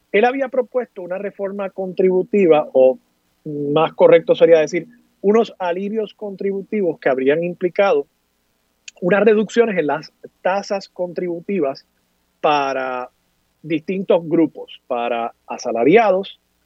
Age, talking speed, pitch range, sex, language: 30-49, 100 wpm, 140-235 Hz, male, Spanish